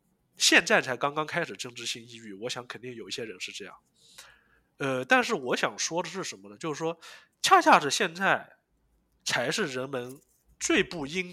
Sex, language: male, Chinese